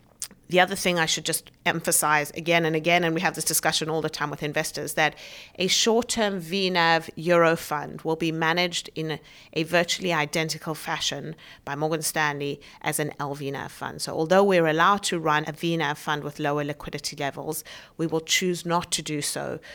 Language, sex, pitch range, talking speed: English, female, 145-165 Hz, 190 wpm